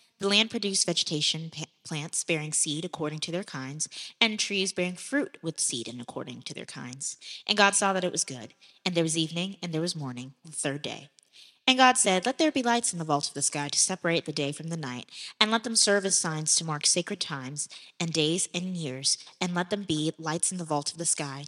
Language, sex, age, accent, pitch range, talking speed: English, female, 20-39, American, 150-190 Hz, 235 wpm